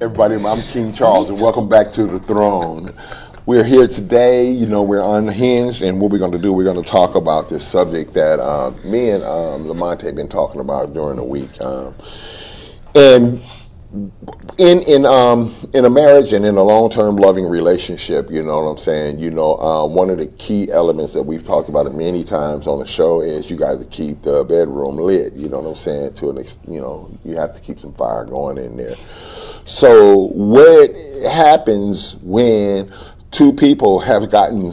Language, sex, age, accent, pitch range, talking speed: English, male, 40-59, American, 95-145 Hz, 200 wpm